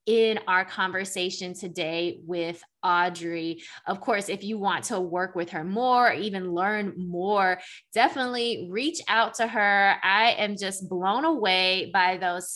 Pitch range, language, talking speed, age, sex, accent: 180-230 Hz, English, 150 wpm, 20-39, female, American